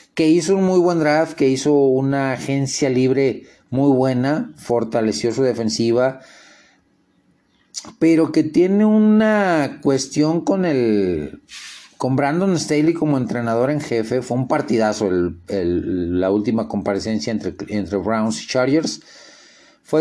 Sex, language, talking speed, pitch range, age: male, Spanish, 130 wpm, 130-190 Hz, 40-59